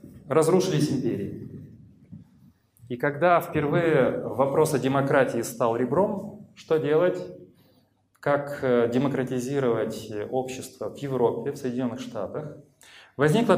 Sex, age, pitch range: male, 30-49, 125-170 Hz